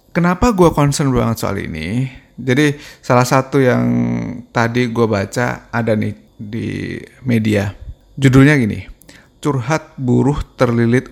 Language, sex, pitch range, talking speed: Indonesian, male, 110-140 Hz, 120 wpm